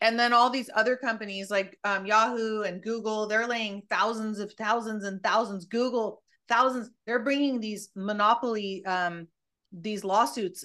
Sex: female